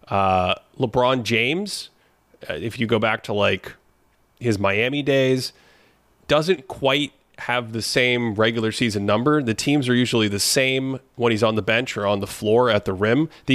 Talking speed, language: 175 wpm, English